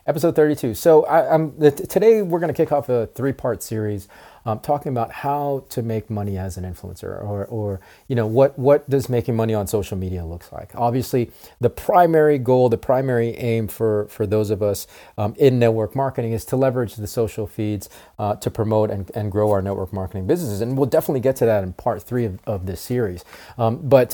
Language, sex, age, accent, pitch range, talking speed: English, male, 30-49, American, 105-130 Hz, 215 wpm